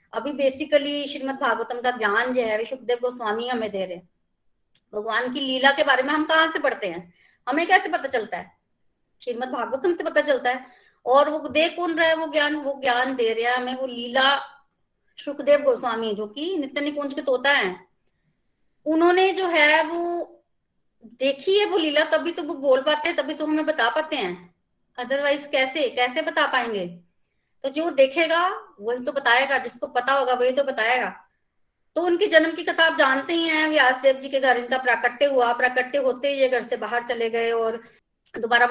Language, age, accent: Hindi, 30-49, native